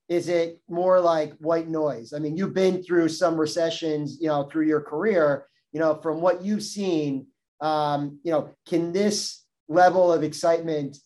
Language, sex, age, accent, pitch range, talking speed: English, male, 30-49, American, 145-165 Hz, 175 wpm